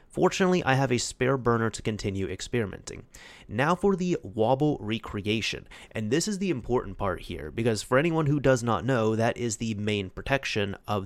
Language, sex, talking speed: English, male, 185 wpm